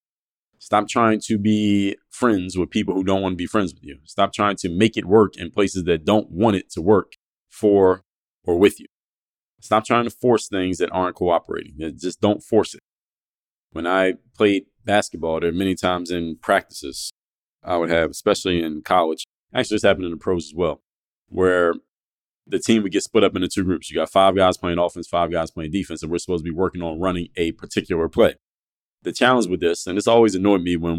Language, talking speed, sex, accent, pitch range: English, 215 wpm, male, American, 85-100 Hz